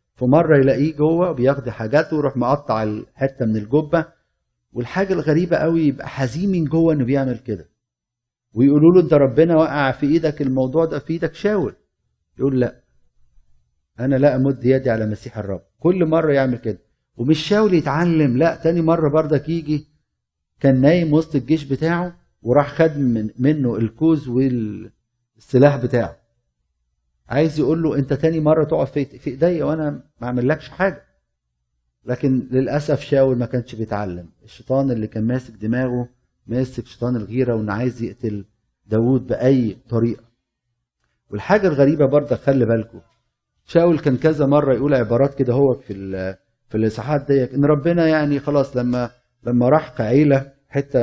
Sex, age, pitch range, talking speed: male, 50-69, 115-150 Hz, 145 wpm